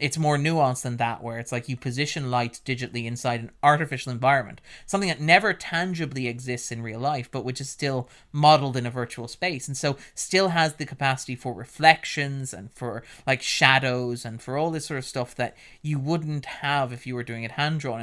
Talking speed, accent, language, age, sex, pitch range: 205 wpm, Irish, English, 30-49, male, 120-145 Hz